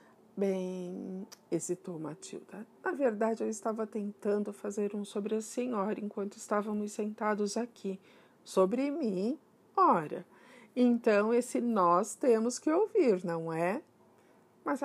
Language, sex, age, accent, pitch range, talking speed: Portuguese, female, 50-69, Brazilian, 190-240 Hz, 115 wpm